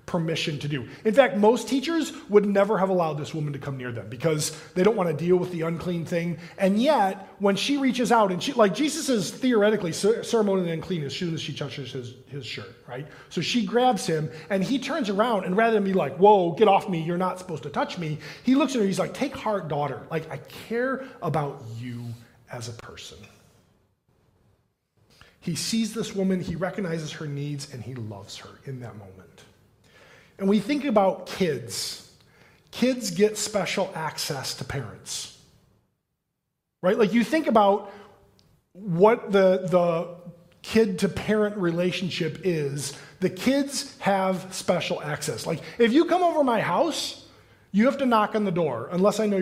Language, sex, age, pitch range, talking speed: English, male, 20-39, 155-215 Hz, 185 wpm